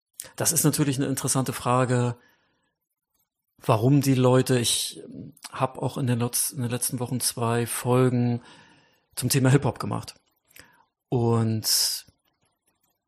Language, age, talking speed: German, 40-59, 125 wpm